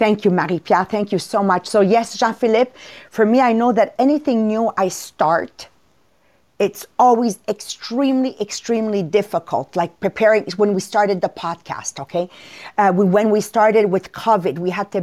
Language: English